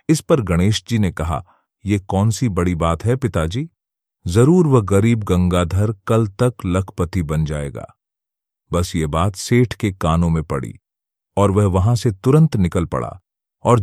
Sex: male